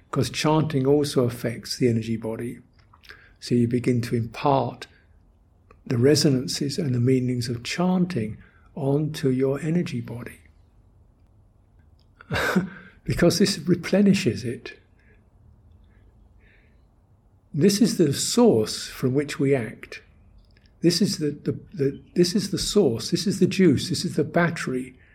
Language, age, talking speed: English, 60-79, 125 wpm